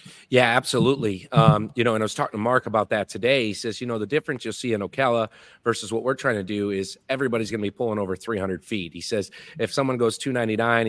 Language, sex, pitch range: English, male, 100-120 Hz